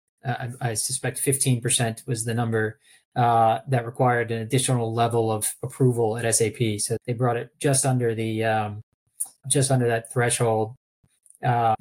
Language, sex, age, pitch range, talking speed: English, male, 20-39, 115-130 Hz, 160 wpm